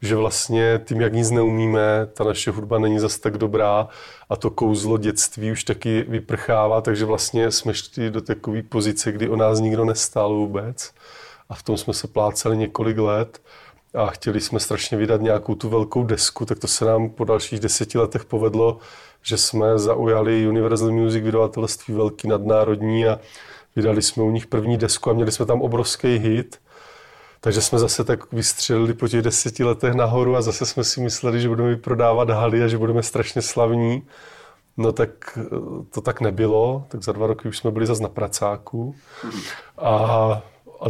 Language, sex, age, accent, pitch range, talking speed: Czech, male, 30-49, native, 110-115 Hz, 180 wpm